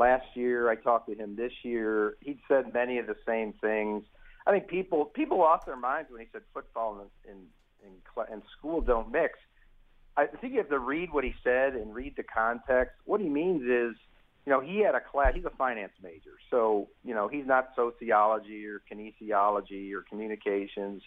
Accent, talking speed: American, 200 wpm